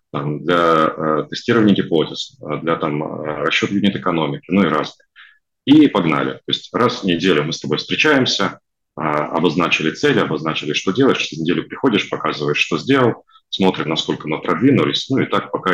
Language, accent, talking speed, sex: Russian, native, 155 wpm, male